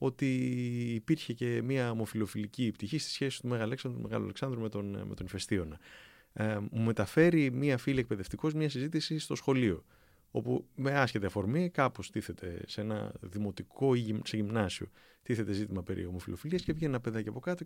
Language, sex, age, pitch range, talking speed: Greek, male, 30-49, 105-135 Hz, 155 wpm